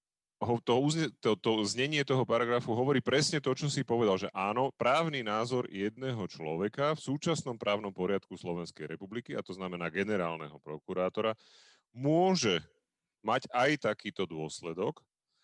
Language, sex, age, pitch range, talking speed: Slovak, male, 30-49, 95-125 Hz, 130 wpm